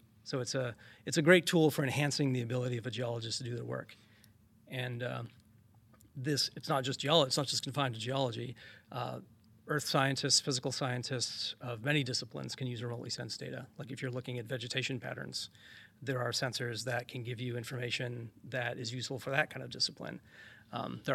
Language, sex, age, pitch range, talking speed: English, male, 30-49, 120-135 Hz, 195 wpm